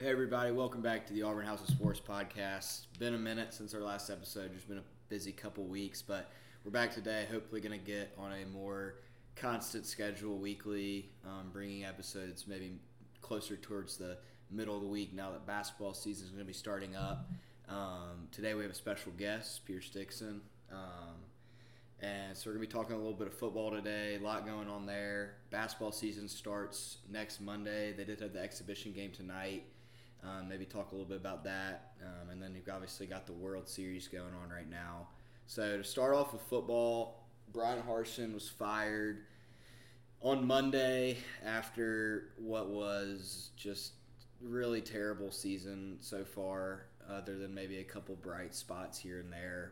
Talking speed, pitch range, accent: 180 wpm, 95-115 Hz, American